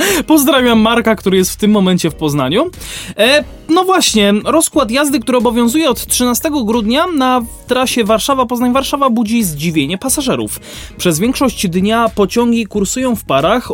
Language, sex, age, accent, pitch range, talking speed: Polish, male, 20-39, native, 175-250 Hz, 135 wpm